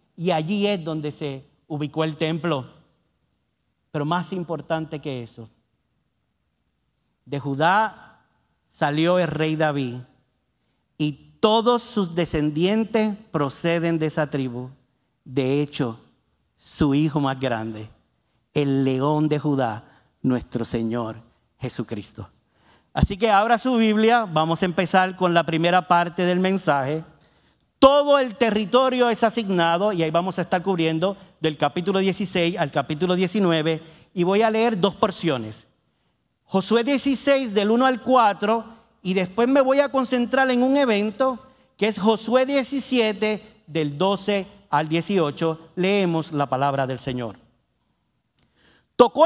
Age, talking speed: 50-69, 130 wpm